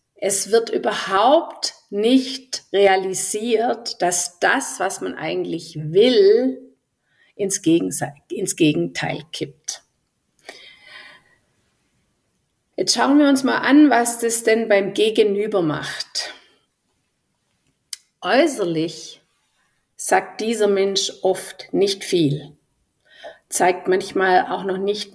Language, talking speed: German, 95 wpm